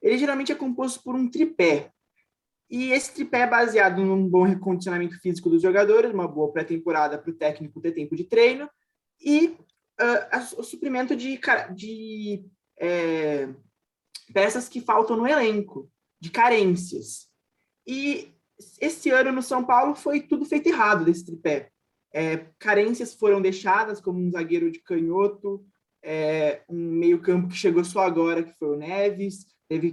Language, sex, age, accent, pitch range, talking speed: Portuguese, male, 20-39, Brazilian, 175-255 Hz, 145 wpm